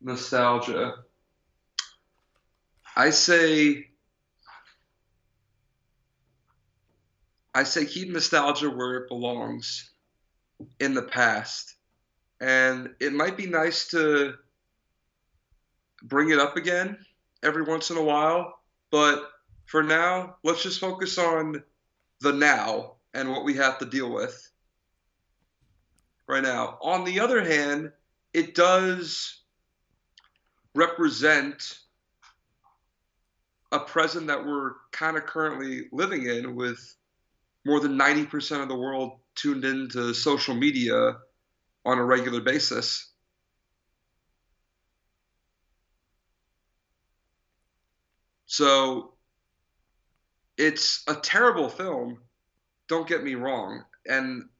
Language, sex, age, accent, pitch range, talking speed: English, male, 40-59, American, 120-155 Hz, 95 wpm